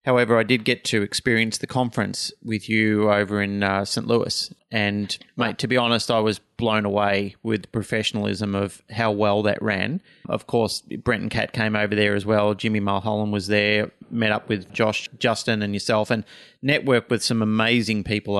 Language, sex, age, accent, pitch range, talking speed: English, male, 30-49, Australian, 105-120 Hz, 185 wpm